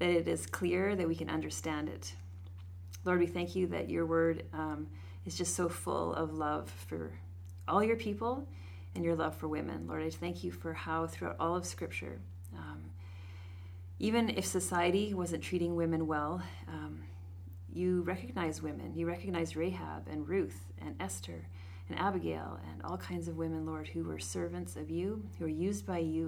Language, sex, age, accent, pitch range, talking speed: English, female, 30-49, American, 85-100 Hz, 180 wpm